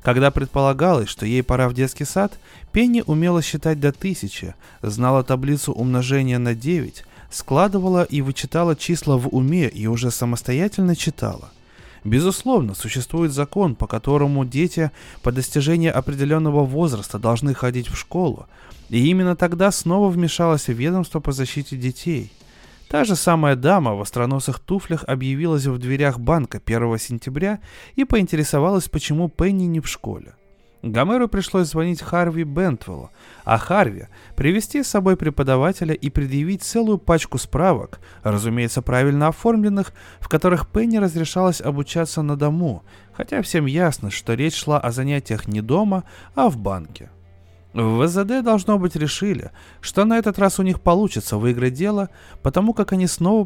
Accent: native